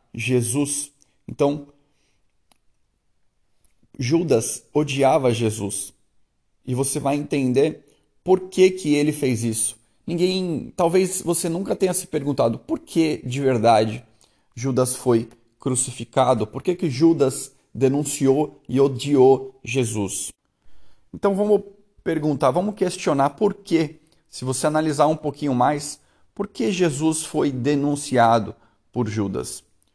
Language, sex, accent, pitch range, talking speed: Portuguese, male, Brazilian, 115-155 Hz, 115 wpm